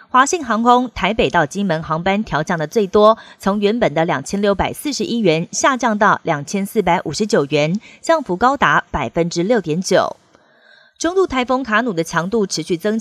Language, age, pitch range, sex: Chinese, 30-49, 170-230 Hz, female